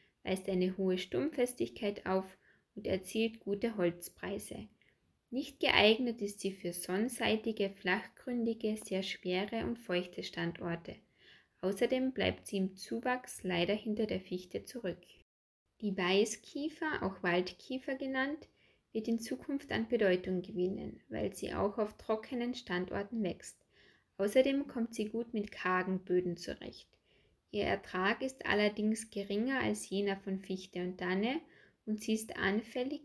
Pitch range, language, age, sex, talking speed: 190-240 Hz, German, 10-29, female, 130 wpm